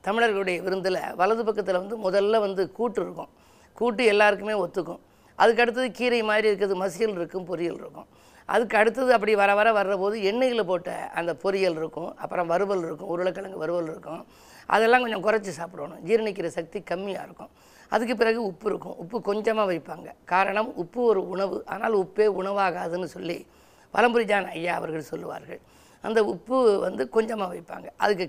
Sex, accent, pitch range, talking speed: female, native, 180-225 Hz, 155 wpm